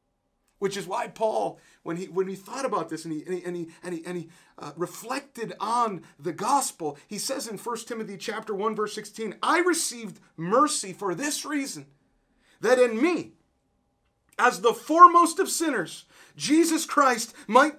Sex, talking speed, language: male, 180 wpm, English